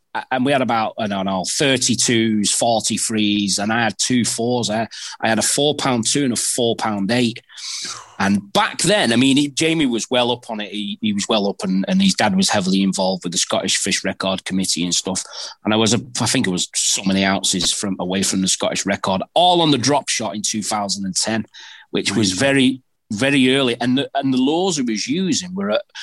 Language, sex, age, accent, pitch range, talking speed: English, male, 30-49, British, 100-140 Hz, 235 wpm